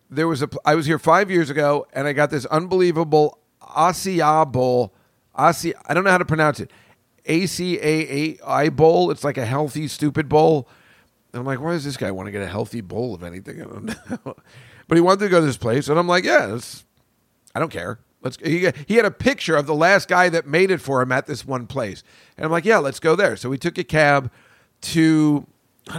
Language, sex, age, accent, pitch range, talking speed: English, male, 40-59, American, 130-175 Hz, 240 wpm